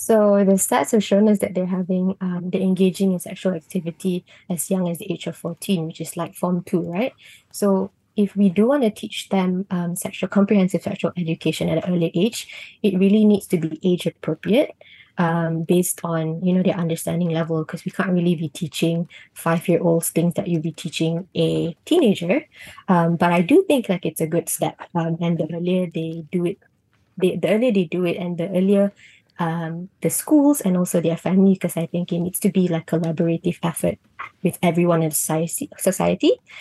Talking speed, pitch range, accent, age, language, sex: 200 wpm, 170-195 Hz, Malaysian, 20-39, English, female